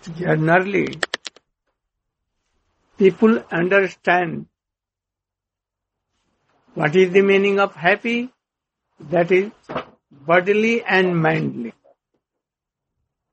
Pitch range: 140-205 Hz